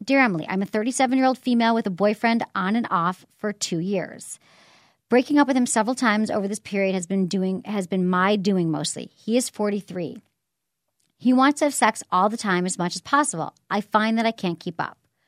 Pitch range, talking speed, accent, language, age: 180-235 Hz, 210 wpm, American, English, 40-59